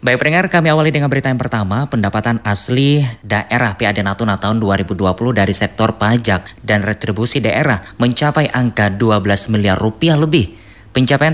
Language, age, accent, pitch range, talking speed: Indonesian, 20-39, native, 100-125 Hz, 150 wpm